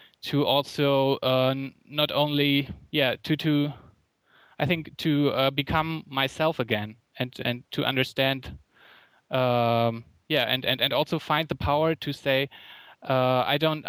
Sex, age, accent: male, 20-39, German